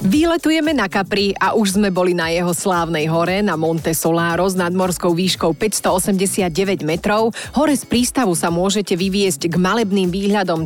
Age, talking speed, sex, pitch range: 30-49, 160 wpm, female, 170-210 Hz